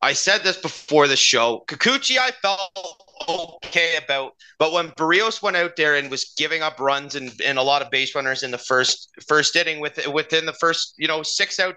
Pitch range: 135-185 Hz